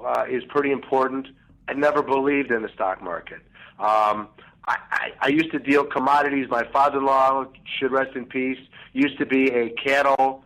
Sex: male